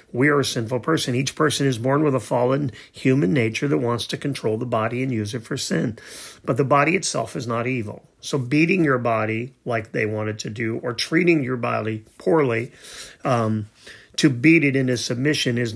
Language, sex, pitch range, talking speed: English, male, 115-140 Hz, 200 wpm